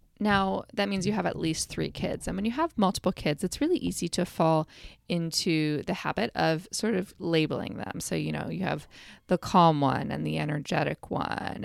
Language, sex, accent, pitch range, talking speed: English, female, American, 155-215 Hz, 205 wpm